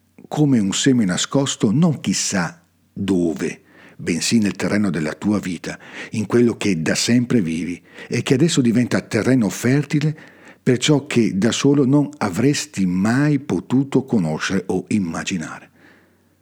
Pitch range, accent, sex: 100-135 Hz, native, male